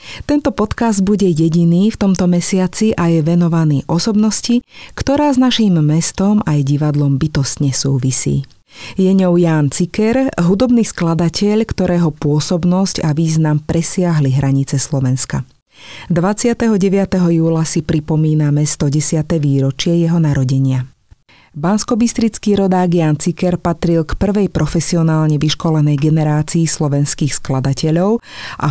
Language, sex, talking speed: Slovak, female, 110 wpm